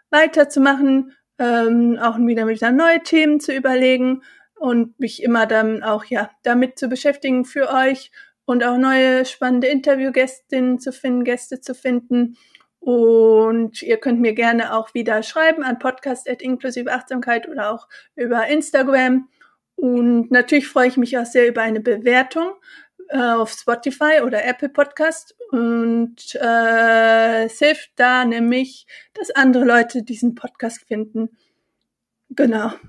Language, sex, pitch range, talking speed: German, female, 235-275 Hz, 135 wpm